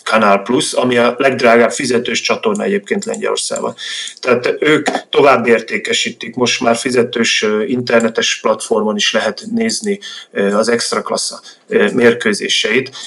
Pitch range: 115-140 Hz